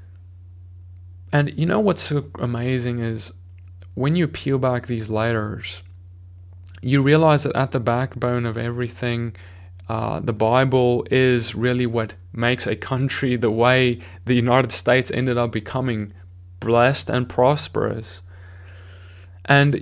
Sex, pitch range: male, 95-130 Hz